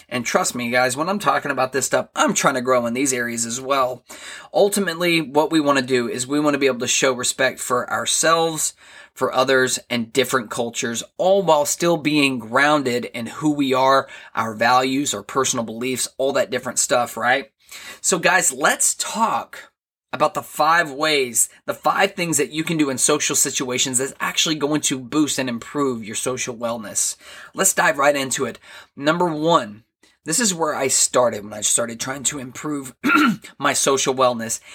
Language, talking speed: English, 190 wpm